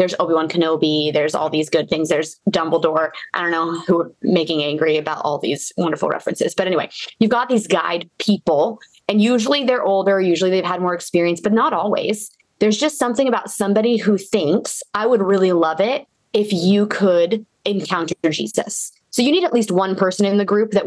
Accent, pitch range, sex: American, 170-220 Hz, female